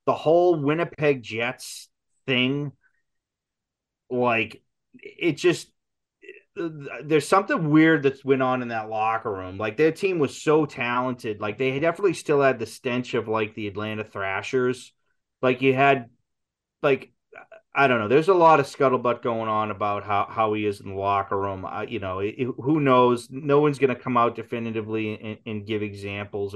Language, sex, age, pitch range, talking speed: English, male, 30-49, 110-140 Hz, 165 wpm